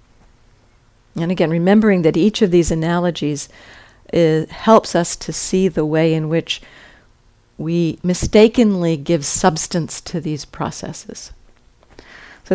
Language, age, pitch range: English, 50-69, 145-195 Hz